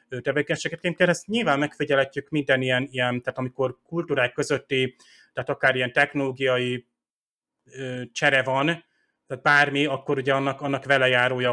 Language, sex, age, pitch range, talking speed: Hungarian, male, 30-49, 125-140 Hz, 135 wpm